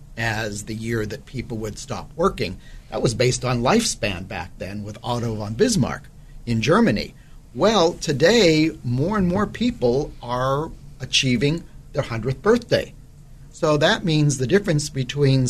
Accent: American